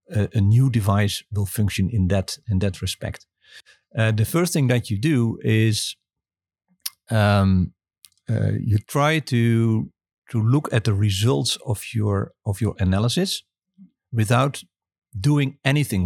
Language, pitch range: English, 100-130 Hz